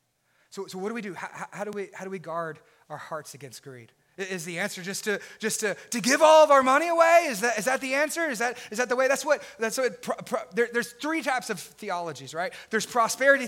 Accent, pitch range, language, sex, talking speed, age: American, 165-250 Hz, English, male, 265 wpm, 30-49